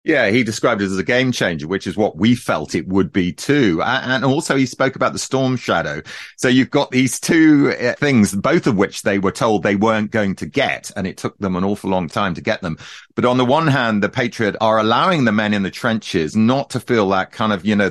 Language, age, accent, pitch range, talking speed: English, 40-59, British, 95-125 Hz, 250 wpm